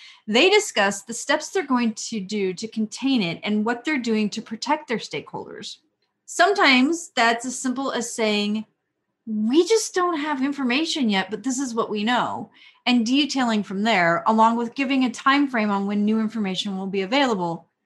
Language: English